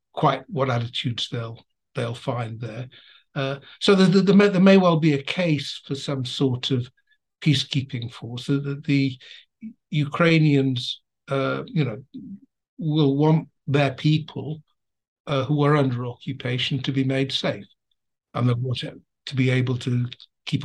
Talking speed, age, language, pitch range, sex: 150 wpm, 60-79, English, 120-145 Hz, male